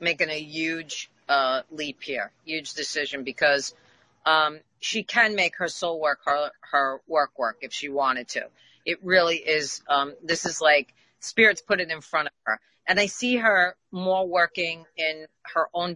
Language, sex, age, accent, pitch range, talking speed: English, female, 40-59, American, 150-185 Hz, 175 wpm